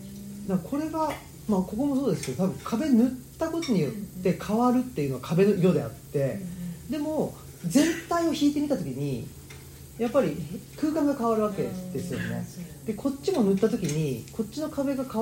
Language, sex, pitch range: Japanese, male, 155-245 Hz